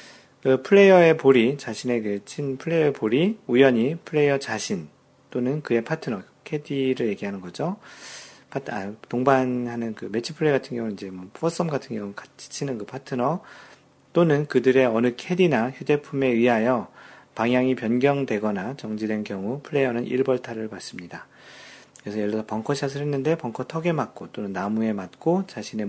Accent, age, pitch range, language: native, 40-59, 110-145 Hz, Korean